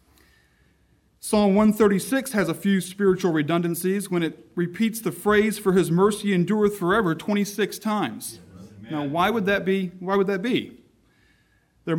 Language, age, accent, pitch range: English, 40-59, American, 160-205 Hz